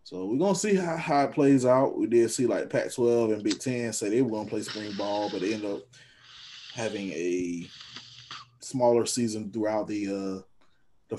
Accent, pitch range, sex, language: American, 100-120 Hz, male, English